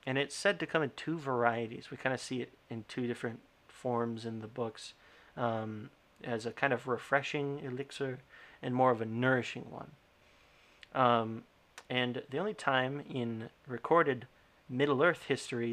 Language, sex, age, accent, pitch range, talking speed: English, male, 40-59, American, 115-135 Hz, 160 wpm